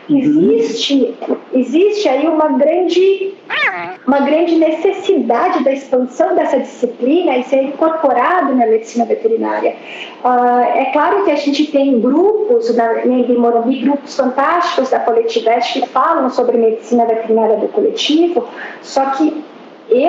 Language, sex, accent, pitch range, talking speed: Portuguese, female, Brazilian, 250-330 Hz, 125 wpm